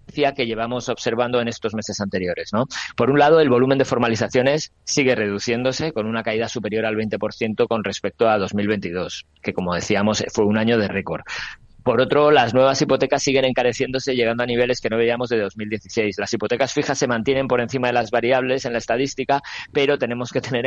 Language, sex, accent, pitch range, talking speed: Spanish, male, Spanish, 110-125 Hz, 190 wpm